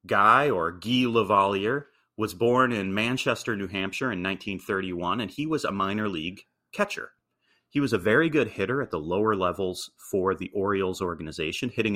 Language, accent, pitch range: English, American, 95-125 Hz